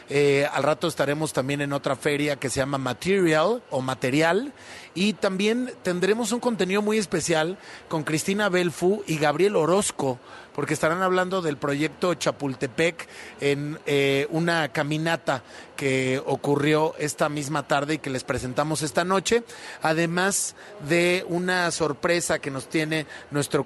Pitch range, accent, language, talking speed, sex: 145-170 Hz, Mexican, Spanish, 140 wpm, male